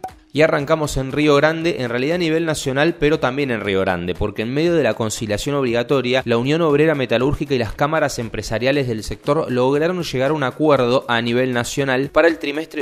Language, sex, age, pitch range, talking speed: Spanish, male, 20-39, 115-150 Hz, 200 wpm